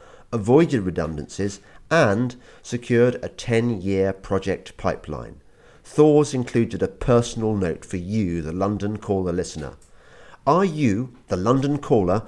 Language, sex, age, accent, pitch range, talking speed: English, male, 40-59, British, 95-120 Hz, 115 wpm